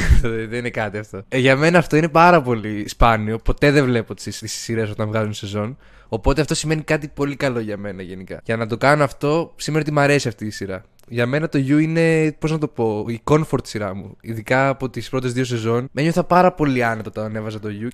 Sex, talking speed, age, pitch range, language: male, 230 wpm, 20-39, 115-155 Hz, Greek